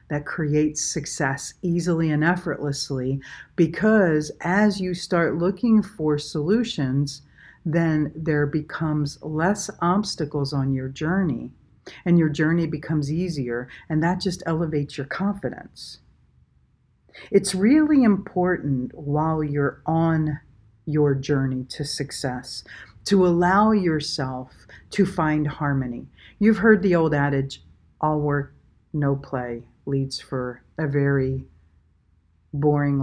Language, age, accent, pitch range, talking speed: English, 50-69, American, 135-165 Hz, 115 wpm